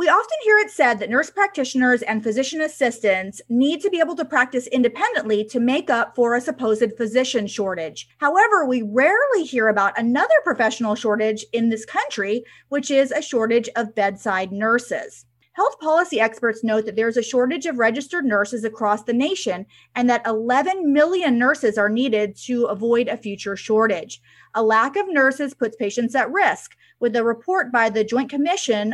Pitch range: 215-275 Hz